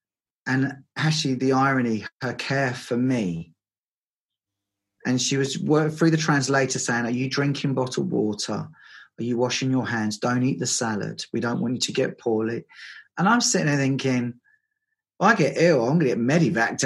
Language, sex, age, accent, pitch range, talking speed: English, male, 30-49, British, 110-145 Hz, 175 wpm